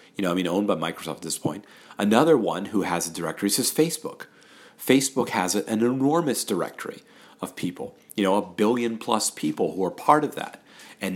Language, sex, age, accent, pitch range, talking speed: English, male, 40-59, American, 95-115 Hz, 200 wpm